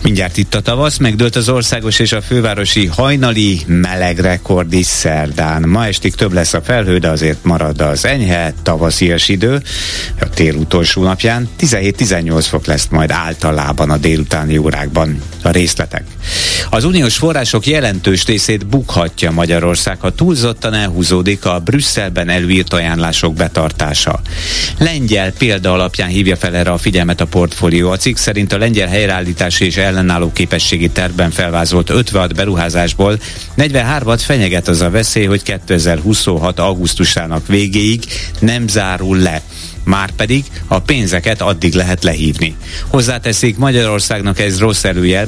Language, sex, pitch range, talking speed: Hungarian, male, 85-110 Hz, 135 wpm